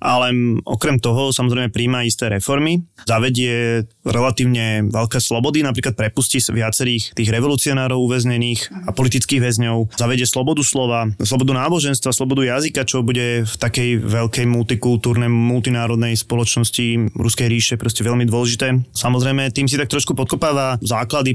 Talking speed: 130 wpm